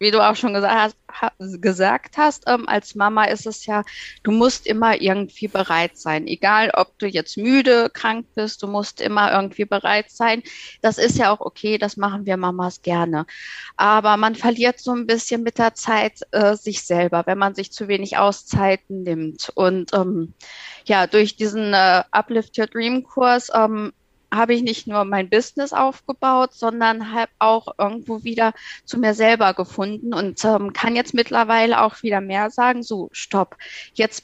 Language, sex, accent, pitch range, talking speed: German, female, German, 200-235 Hz, 175 wpm